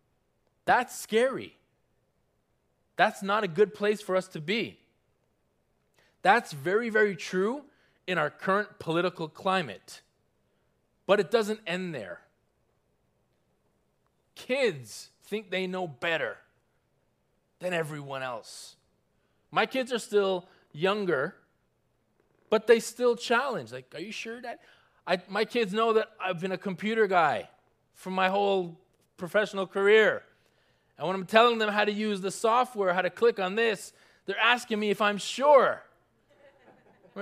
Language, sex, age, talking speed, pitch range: English, male, 20-39, 135 wpm, 190-250 Hz